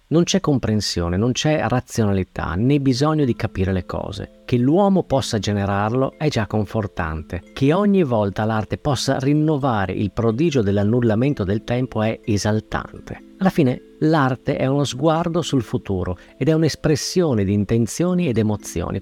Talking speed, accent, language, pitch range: 150 wpm, native, Italian, 100-150 Hz